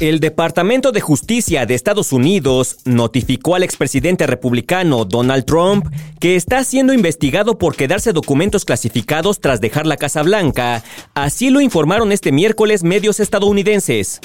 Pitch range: 130-200 Hz